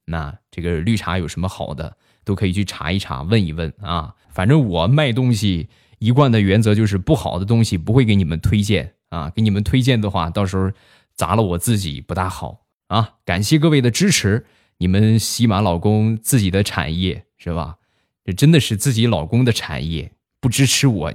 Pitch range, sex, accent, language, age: 95-125 Hz, male, native, Chinese, 20-39